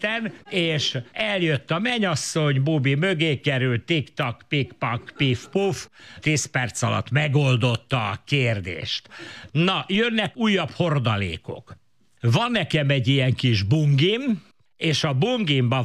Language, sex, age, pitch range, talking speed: Hungarian, male, 60-79, 125-160 Hz, 110 wpm